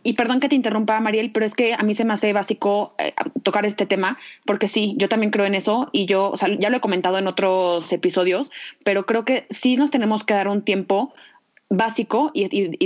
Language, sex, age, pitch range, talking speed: Spanish, female, 20-39, 195-230 Hz, 240 wpm